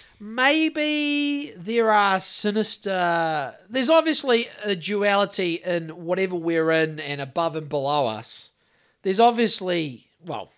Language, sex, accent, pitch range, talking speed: English, male, Australian, 145-205 Hz, 115 wpm